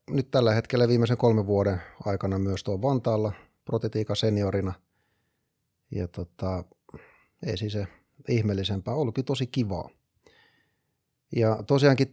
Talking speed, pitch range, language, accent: 110 wpm, 100-120 Hz, Finnish, native